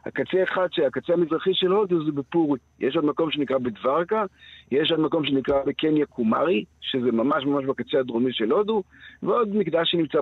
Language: Hebrew